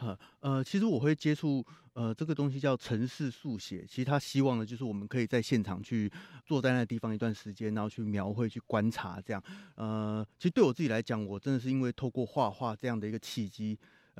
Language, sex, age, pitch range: Chinese, male, 30-49, 105-135 Hz